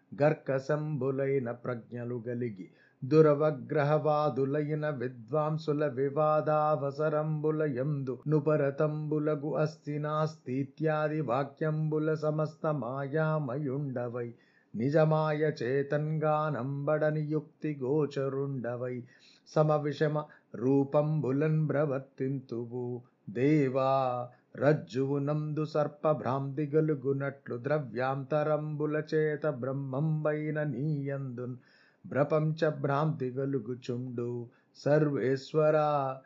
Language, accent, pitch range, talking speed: Telugu, native, 135-155 Hz, 40 wpm